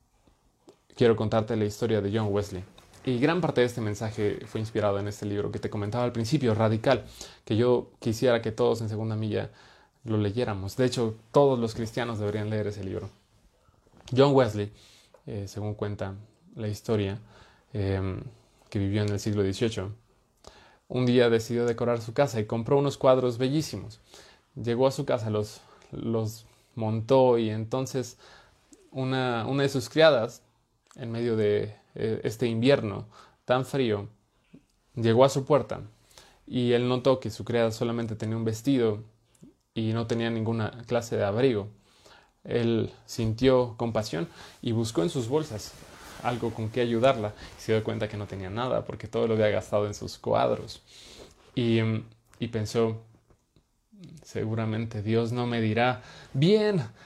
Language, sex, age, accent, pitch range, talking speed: Spanish, male, 20-39, Mexican, 105-125 Hz, 155 wpm